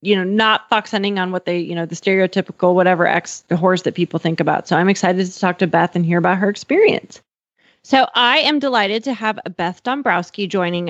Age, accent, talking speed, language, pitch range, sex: 30-49, American, 225 wpm, English, 175-210 Hz, female